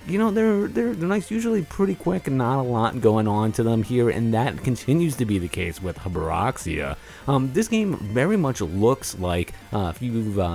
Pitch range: 95-140 Hz